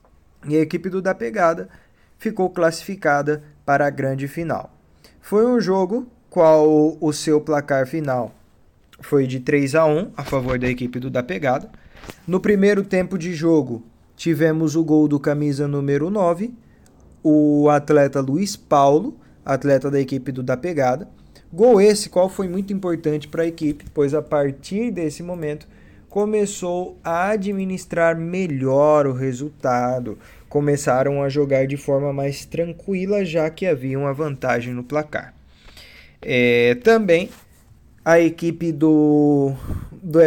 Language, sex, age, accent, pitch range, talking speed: Portuguese, male, 20-39, Brazilian, 140-185 Hz, 140 wpm